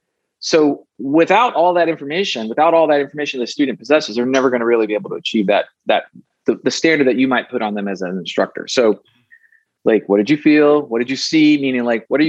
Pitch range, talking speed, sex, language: 120-150 Hz, 245 wpm, male, English